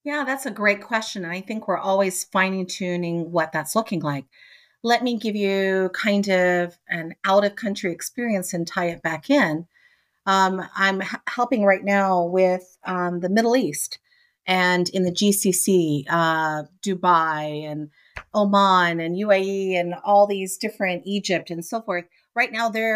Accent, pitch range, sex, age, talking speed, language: American, 175-225 Hz, female, 40-59, 175 wpm, English